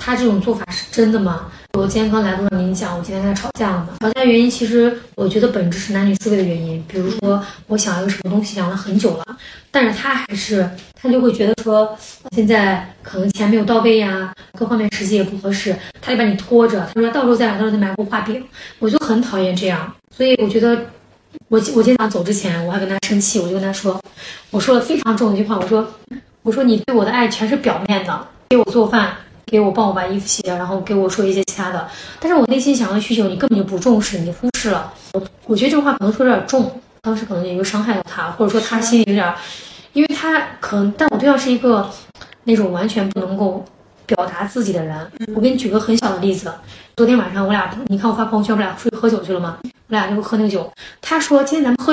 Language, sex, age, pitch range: Chinese, female, 20-39, 190-235 Hz